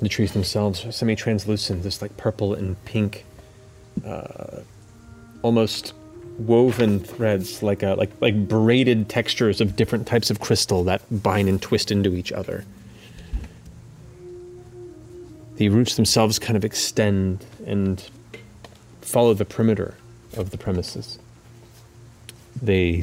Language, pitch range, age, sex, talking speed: English, 95-115 Hz, 30-49, male, 120 wpm